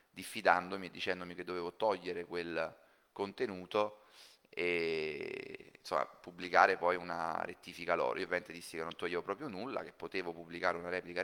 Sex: male